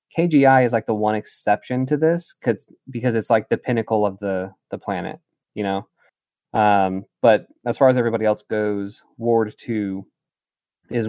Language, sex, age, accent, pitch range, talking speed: English, male, 20-39, American, 105-125 Hz, 170 wpm